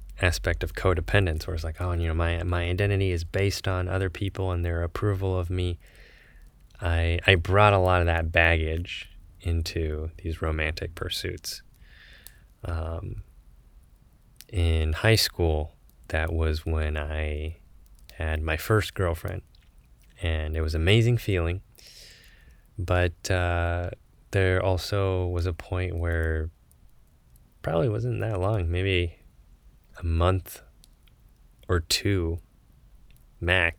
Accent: American